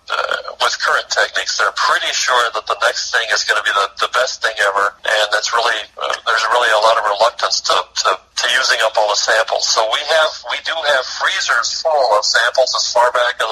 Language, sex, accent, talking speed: English, male, American, 230 wpm